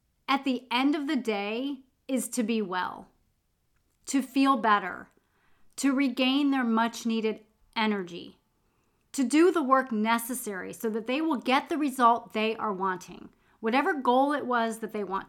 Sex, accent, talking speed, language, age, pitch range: female, American, 155 wpm, English, 30-49, 220-280 Hz